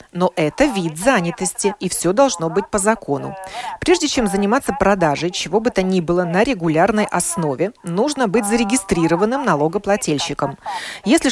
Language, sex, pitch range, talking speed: Russian, female, 170-245 Hz, 145 wpm